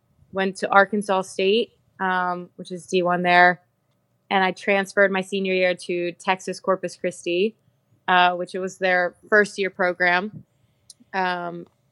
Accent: American